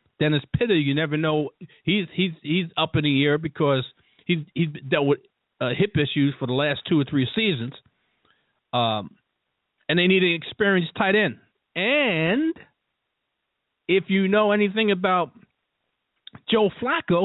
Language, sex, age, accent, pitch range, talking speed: English, male, 40-59, American, 135-195 Hz, 150 wpm